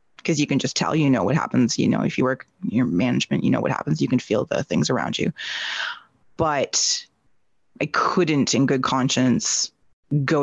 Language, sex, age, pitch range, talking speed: English, female, 20-39, 130-155 Hz, 195 wpm